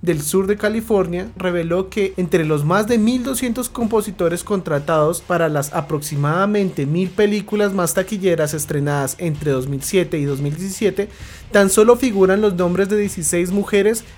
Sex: male